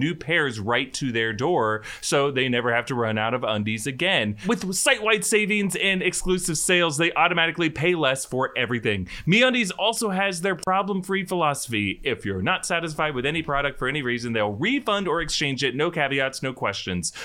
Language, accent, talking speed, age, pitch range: English, American, 185 wpm, 30-49, 110-175 Hz